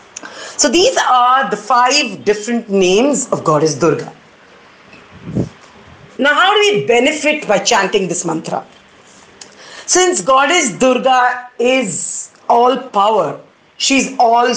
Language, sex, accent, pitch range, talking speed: English, female, Indian, 215-295 Hz, 110 wpm